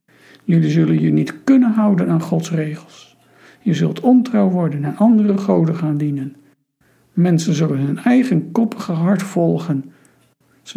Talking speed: 145 wpm